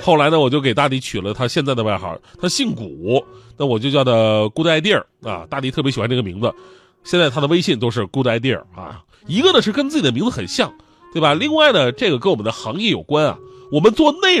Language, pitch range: Chinese, 120-165 Hz